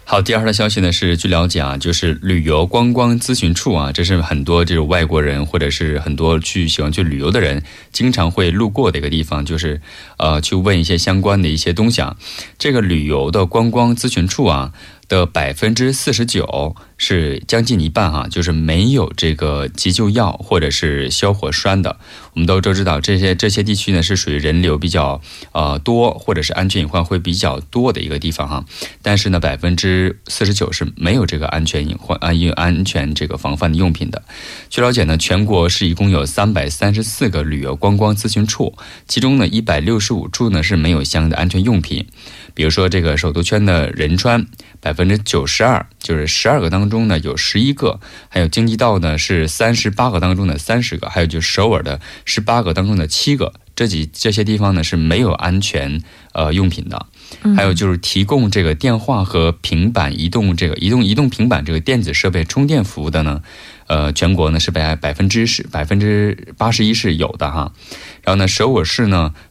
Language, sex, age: Korean, male, 20-39